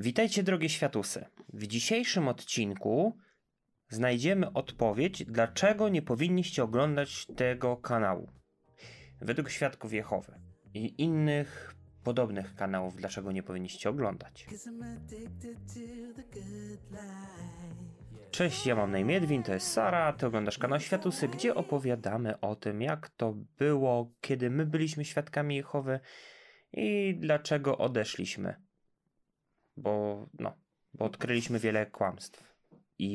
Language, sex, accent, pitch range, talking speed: Polish, male, native, 110-165 Hz, 105 wpm